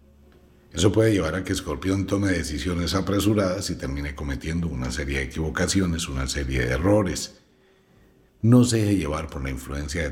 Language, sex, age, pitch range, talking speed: Spanish, male, 60-79, 70-100 Hz, 165 wpm